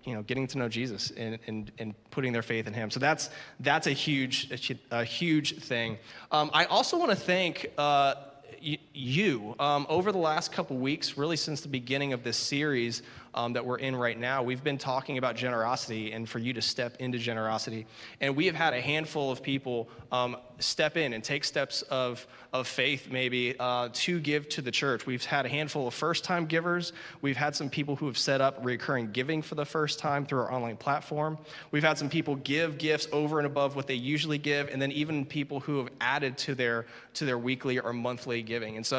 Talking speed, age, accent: 215 wpm, 20-39, American